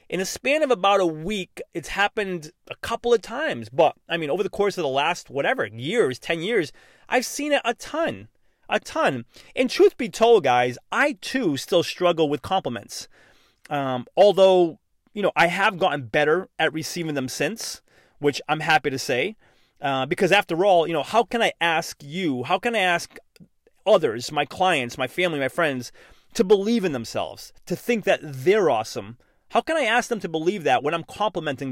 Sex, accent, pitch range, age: male, American, 150-220 Hz, 30-49